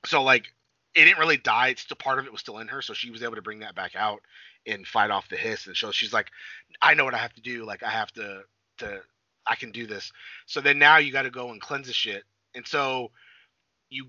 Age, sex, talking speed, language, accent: 30-49, male, 270 wpm, English, American